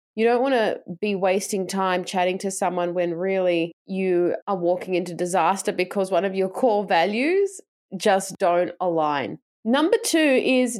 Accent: Australian